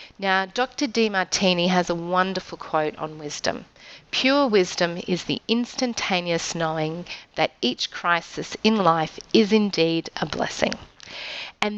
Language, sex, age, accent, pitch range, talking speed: English, female, 30-49, Australian, 170-210 Hz, 125 wpm